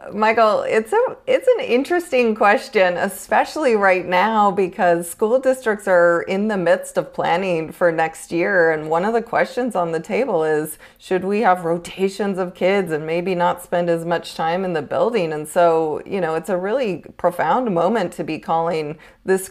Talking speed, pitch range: 185 wpm, 175-235 Hz